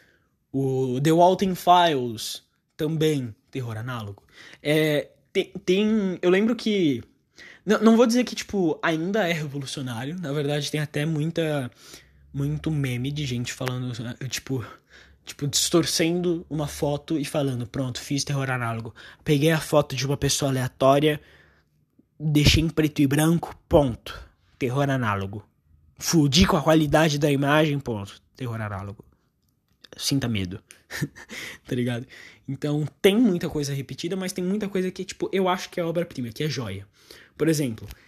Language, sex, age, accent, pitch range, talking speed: Portuguese, male, 20-39, Brazilian, 120-160 Hz, 145 wpm